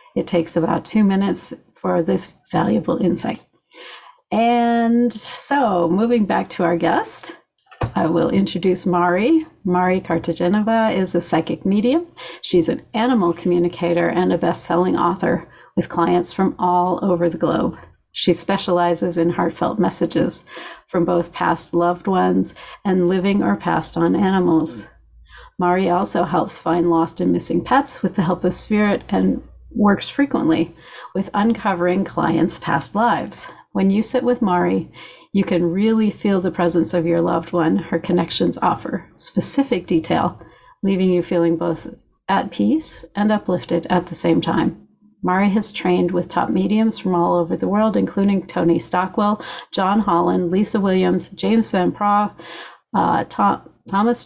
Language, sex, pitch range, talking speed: English, female, 170-210 Hz, 145 wpm